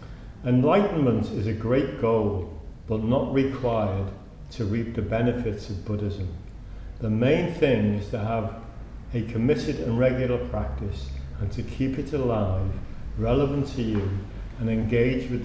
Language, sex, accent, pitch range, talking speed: English, male, British, 100-120 Hz, 140 wpm